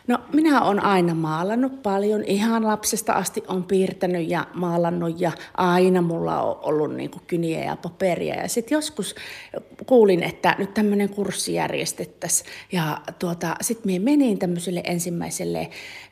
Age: 30-49